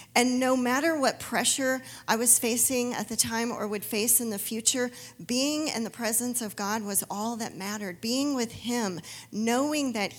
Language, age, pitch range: English, 40-59, 195-245 Hz